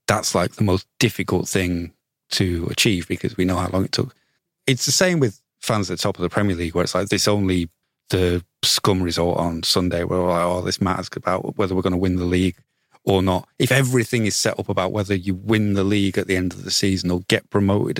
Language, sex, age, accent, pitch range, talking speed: English, male, 30-49, British, 90-105 Hz, 245 wpm